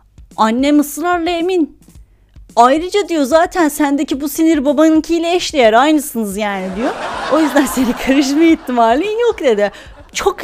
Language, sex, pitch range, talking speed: Turkish, female, 225-315 Hz, 125 wpm